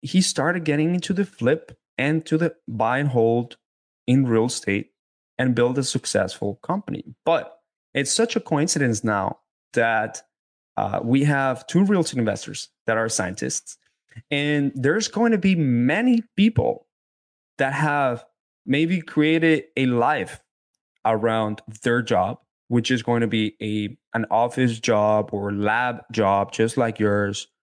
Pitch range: 110-135 Hz